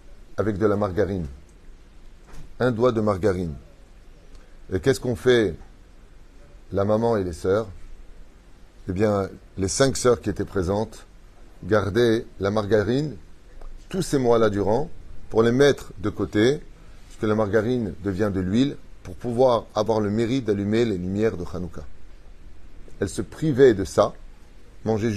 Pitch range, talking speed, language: 95-125 Hz, 145 wpm, French